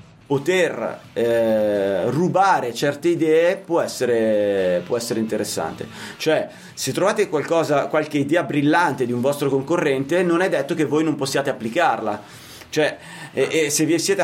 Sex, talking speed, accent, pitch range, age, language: male, 150 wpm, native, 130-175 Hz, 30-49, Italian